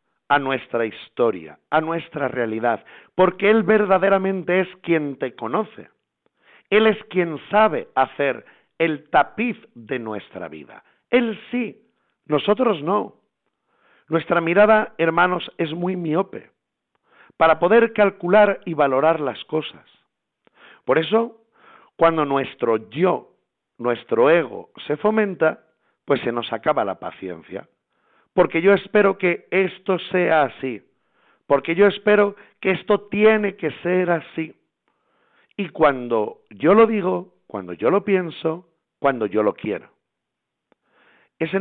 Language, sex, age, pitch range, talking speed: Spanish, male, 50-69, 135-195 Hz, 125 wpm